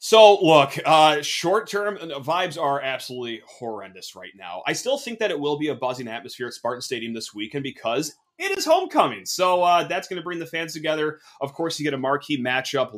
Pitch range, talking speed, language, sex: 120-180 Hz, 210 wpm, English, male